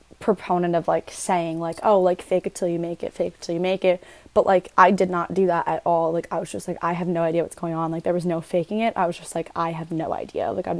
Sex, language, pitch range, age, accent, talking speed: female, English, 165-185 Hz, 20-39, American, 305 wpm